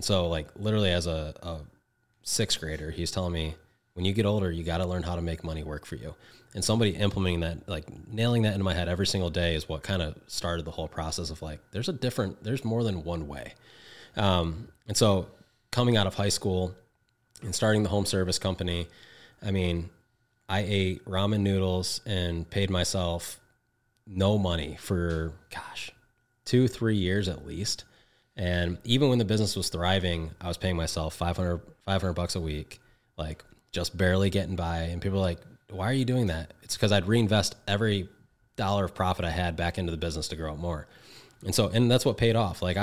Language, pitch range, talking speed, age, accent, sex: English, 85-105 Hz, 205 wpm, 20-39, American, male